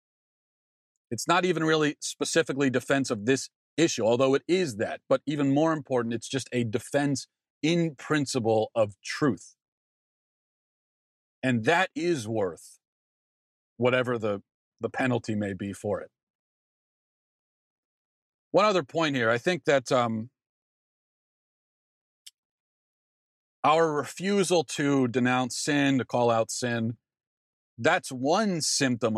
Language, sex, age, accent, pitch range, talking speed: English, male, 40-59, American, 115-150 Hz, 115 wpm